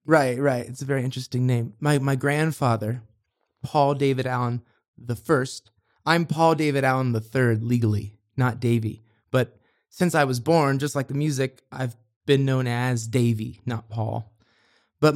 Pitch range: 115-150 Hz